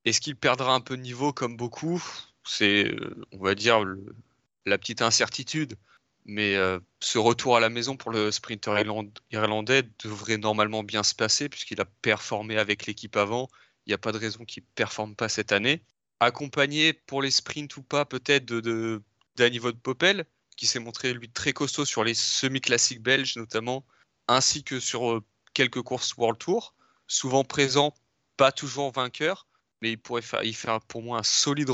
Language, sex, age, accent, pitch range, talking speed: French, male, 30-49, French, 110-130 Hz, 180 wpm